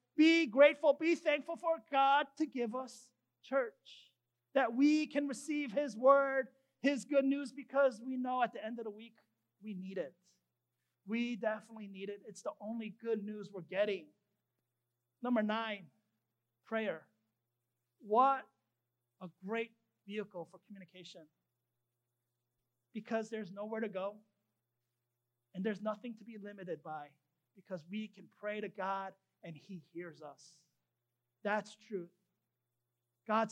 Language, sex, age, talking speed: English, male, 40-59, 135 wpm